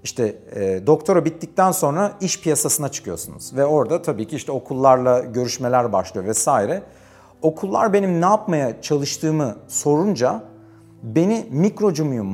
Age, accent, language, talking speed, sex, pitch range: 40-59, native, Turkish, 120 wpm, male, 120-160 Hz